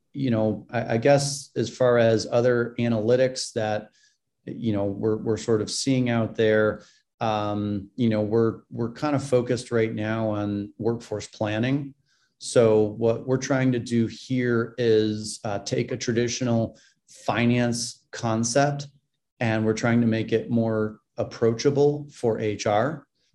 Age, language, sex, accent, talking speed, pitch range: 30-49, English, male, American, 145 wpm, 110-120 Hz